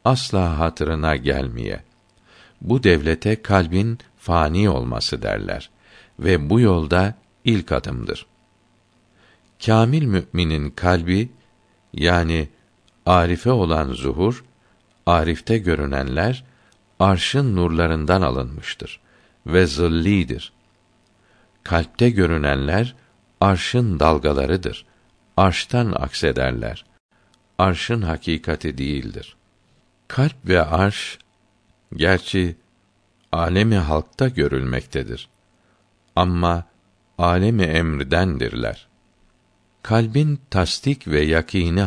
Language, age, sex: Turkish, 60-79, male